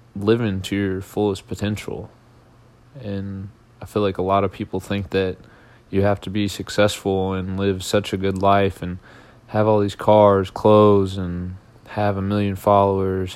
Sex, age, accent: male, 20-39, American